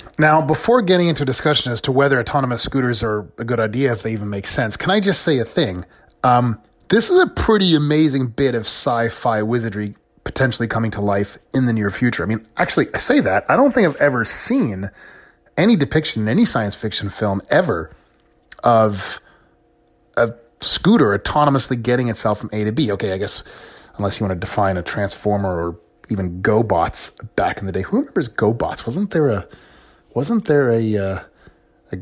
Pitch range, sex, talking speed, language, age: 105-140 Hz, male, 190 wpm, English, 30-49